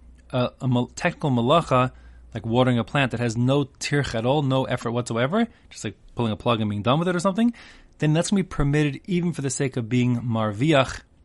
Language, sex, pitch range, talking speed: English, male, 110-145 Hz, 220 wpm